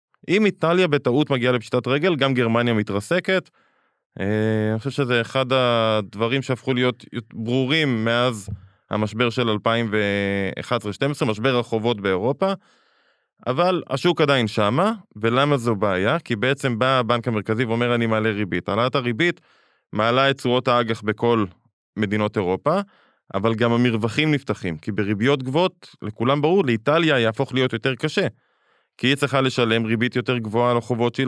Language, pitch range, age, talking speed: Hebrew, 115-150 Hz, 20-39, 140 wpm